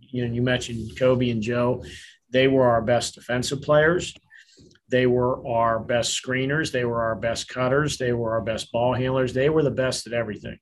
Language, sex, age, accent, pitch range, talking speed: English, male, 40-59, American, 120-135 Hz, 185 wpm